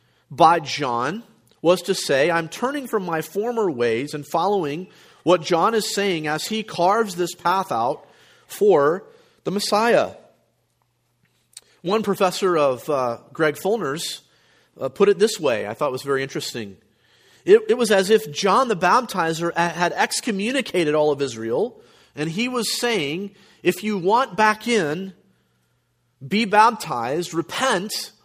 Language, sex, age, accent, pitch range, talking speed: English, male, 40-59, American, 140-200 Hz, 140 wpm